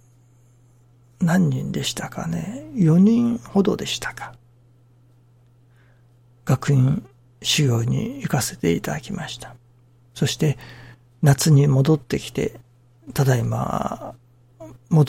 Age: 60-79